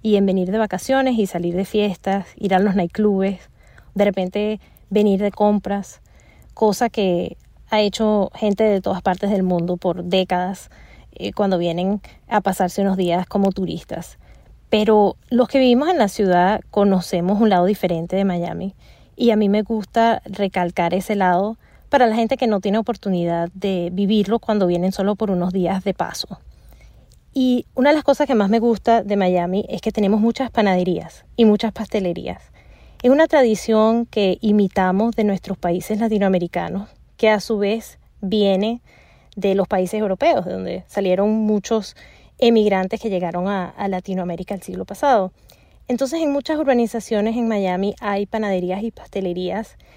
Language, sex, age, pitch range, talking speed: Spanish, female, 20-39, 185-225 Hz, 165 wpm